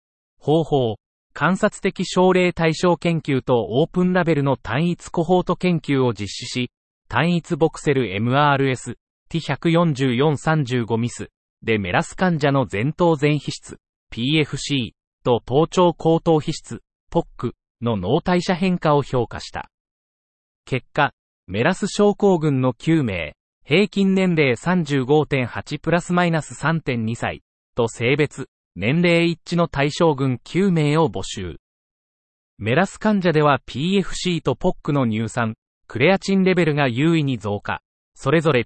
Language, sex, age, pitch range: Japanese, male, 30-49, 120-170 Hz